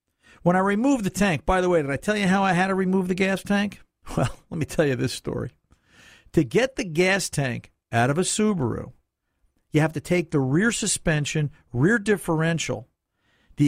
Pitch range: 135-185 Hz